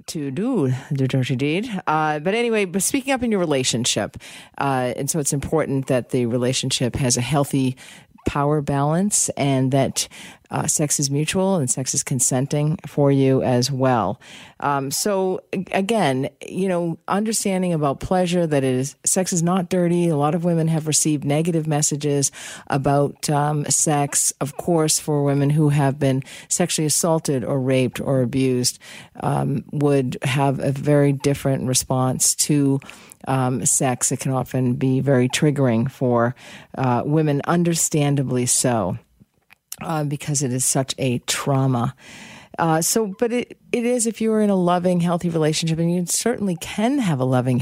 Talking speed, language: 160 wpm, English